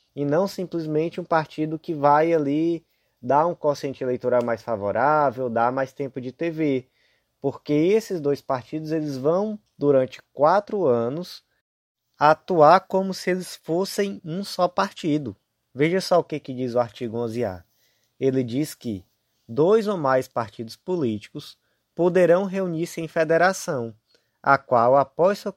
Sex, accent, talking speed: male, Brazilian, 140 wpm